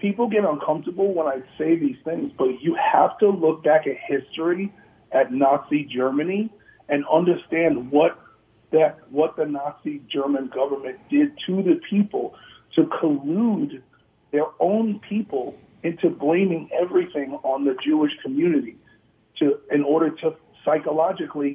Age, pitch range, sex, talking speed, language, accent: 50-69, 140-180 Hz, male, 135 wpm, English, American